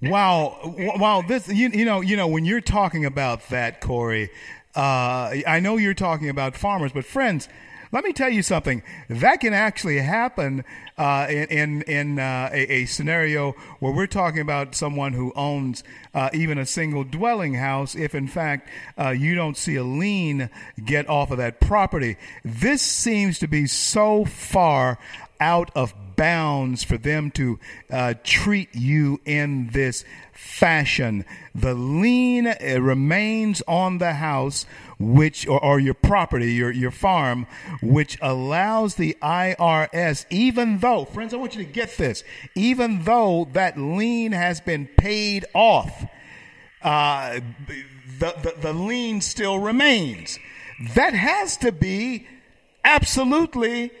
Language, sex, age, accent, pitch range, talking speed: English, male, 50-69, American, 135-200 Hz, 145 wpm